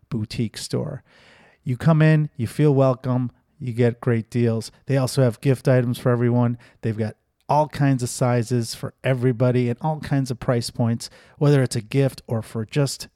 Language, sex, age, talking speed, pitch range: English, male, 30-49, 180 wpm, 125-150 Hz